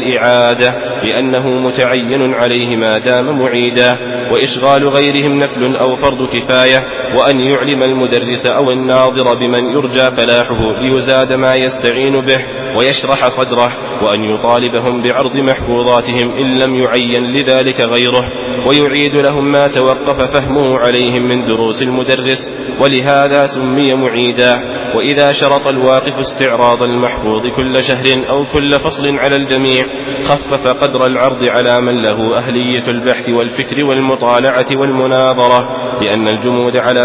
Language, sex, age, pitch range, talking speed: Arabic, male, 30-49, 125-135 Hz, 120 wpm